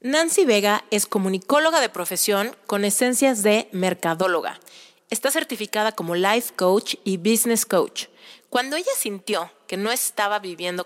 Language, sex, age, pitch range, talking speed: Spanish, female, 30-49, 185-235 Hz, 140 wpm